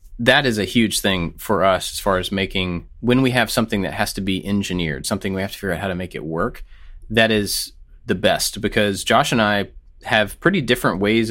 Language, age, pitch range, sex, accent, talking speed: English, 30-49, 85-110 Hz, male, American, 230 wpm